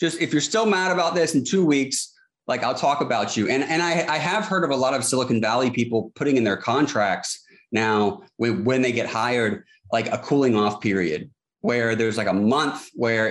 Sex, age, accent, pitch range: male, 20-39, American, 110-135 Hz